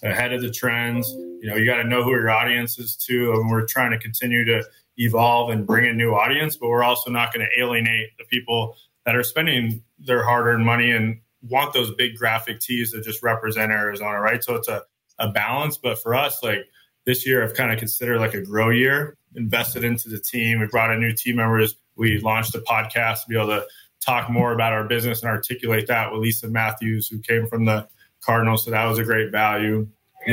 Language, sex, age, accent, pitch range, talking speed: English, male, 20-39, American, 110-125 Hz, 220 wpm